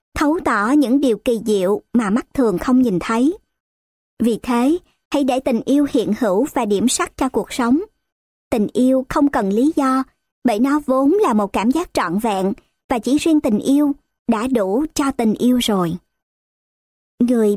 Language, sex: Vietnamese, male